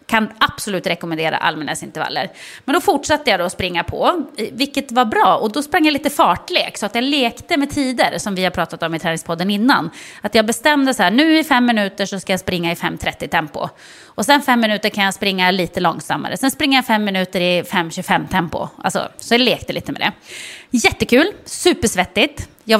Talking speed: 200 wpm